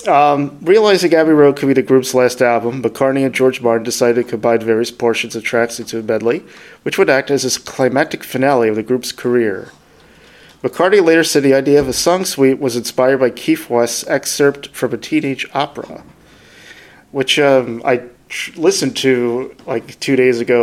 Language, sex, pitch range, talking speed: English, male, 115-140 Hz, 185 wpm